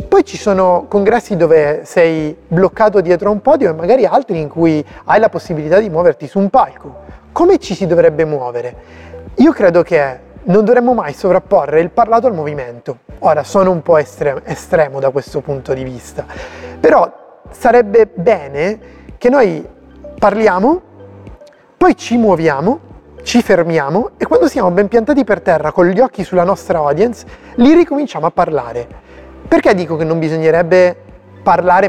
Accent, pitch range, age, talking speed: native, 160-220 Hz, 30-49, 160 wpm